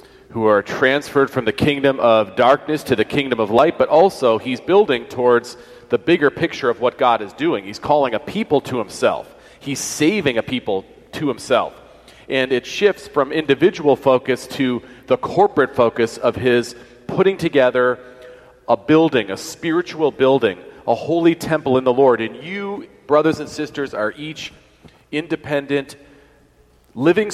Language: English